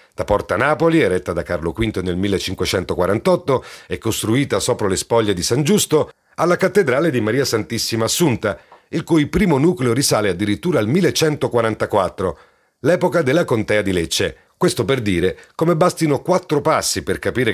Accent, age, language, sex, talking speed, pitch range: native, 40-59, Italian, male, 155 wpm, 105-160 Hz